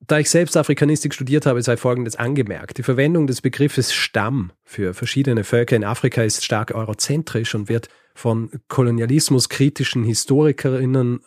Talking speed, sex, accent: 145 wpm, male, German